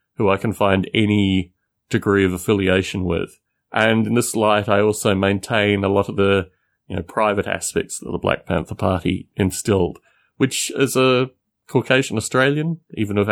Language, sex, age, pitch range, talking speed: English, male, 30-49, 95-125 Hz, 160 wpm